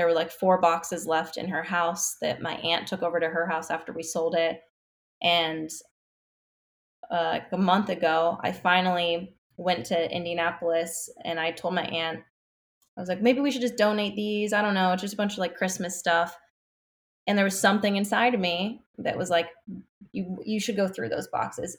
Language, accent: English, American